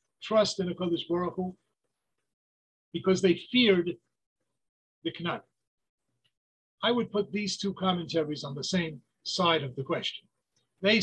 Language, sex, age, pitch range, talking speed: English, male, 50-69, 160-200 Hz, 115 wpm